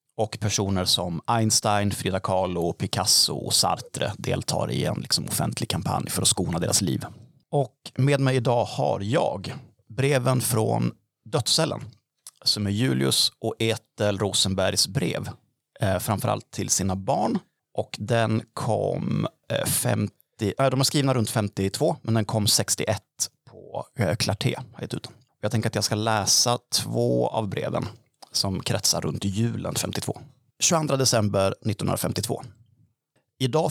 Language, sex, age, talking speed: Swedish, male, 30-49, 135 wpm